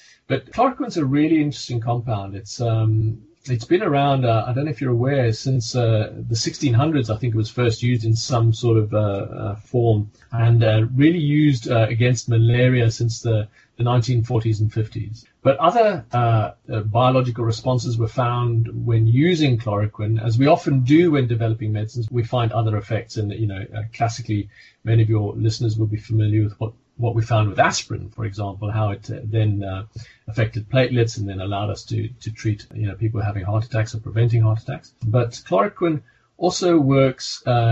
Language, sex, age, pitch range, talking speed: English, male, 30-49, 110-125 Hz, 190 wpm